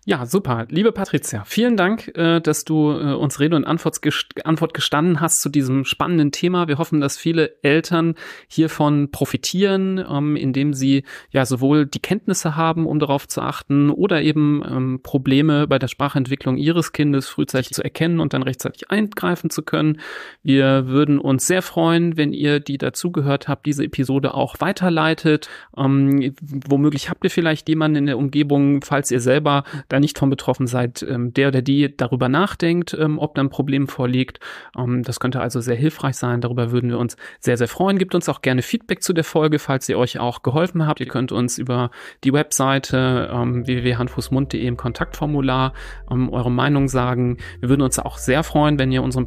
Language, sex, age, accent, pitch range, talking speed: German, male, 40-59, German, 130-155 Hz, 170 wpm